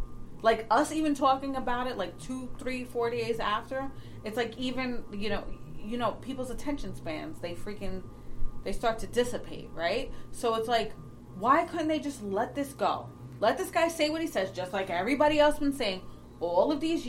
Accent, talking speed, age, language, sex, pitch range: American, 195 wpm, 30-49, English, female, 185-270 Hz